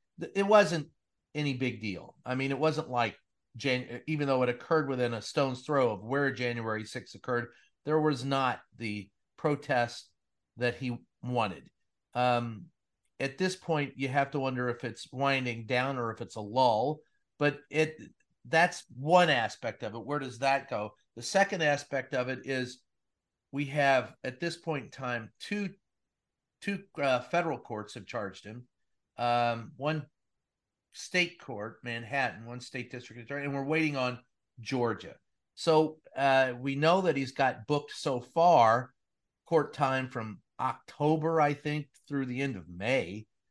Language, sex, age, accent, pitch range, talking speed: English, male, 40-59, American, 120-145 Hz, 160 wpm